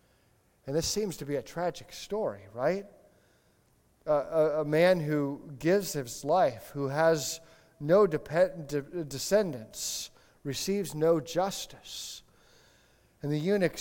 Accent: American